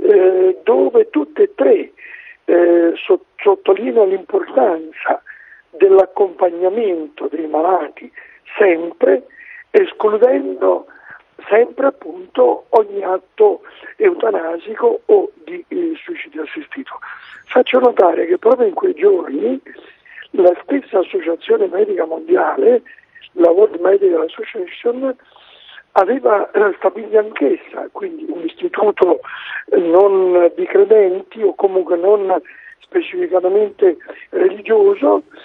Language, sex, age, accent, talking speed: Italian, male, 60-79, native, 90 wpm